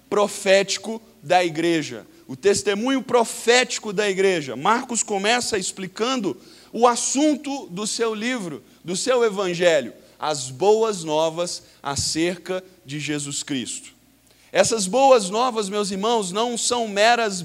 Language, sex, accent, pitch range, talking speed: Portuguese, male, Brazilian, 175-230 Hz, 115 wpm